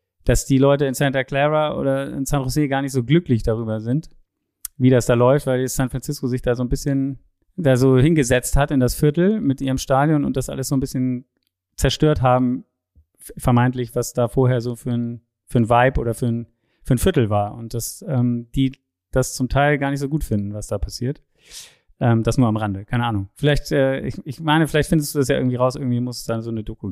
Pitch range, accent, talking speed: 120-145 Hz, German, 230 wpm